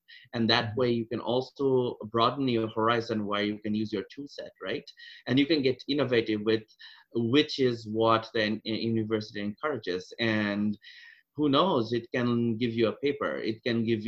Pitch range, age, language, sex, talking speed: 110-135 Hz, 30-49, English, male, 175 wpm